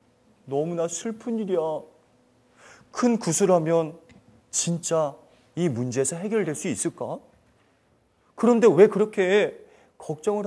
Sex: male